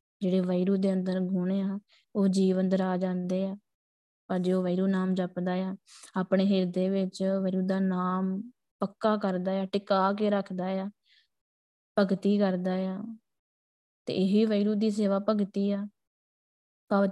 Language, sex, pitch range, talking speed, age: Punjabi, female, 185-200 Hz, 145 wpm, 20-39